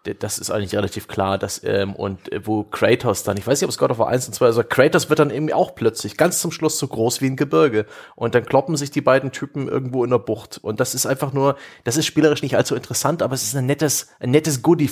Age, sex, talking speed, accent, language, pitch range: 30-49, male, 280 wpm, German, German, 110-140 Hz